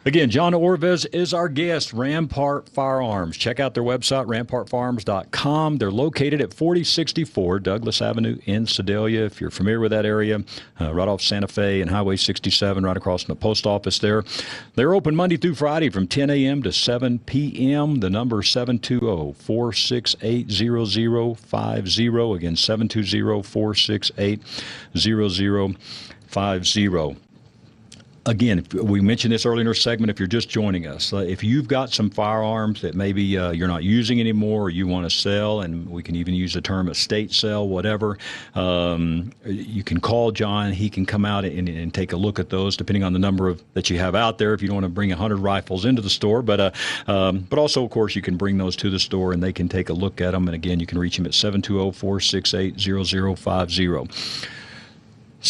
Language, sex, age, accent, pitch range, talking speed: English, male, 50-69, American, 95-120 Hz, 180 wpm